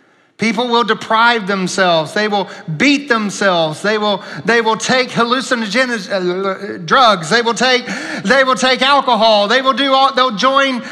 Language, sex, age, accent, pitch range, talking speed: English, male, 40-59, American, 195-255 Hz, 155 wpm